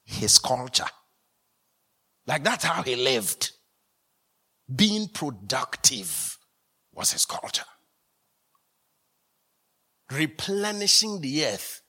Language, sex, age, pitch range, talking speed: English, male, 60-79, 125-175 Hz, 75 wpm